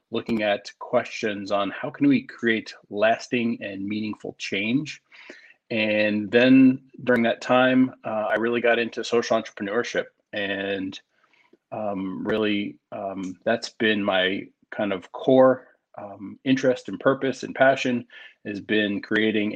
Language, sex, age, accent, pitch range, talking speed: English, male, 30-49, American, 105-125 Hz, 130 wpm